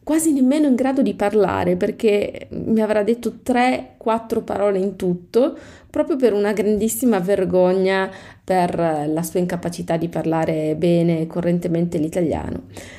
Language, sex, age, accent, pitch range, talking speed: Italian, female, 30-49, native, 175-240 Hz, 130 wpm